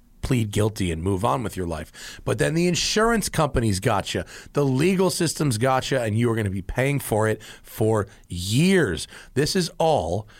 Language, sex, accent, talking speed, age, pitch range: English, male, American, 185 wpm, 30-49, 100-155 Hz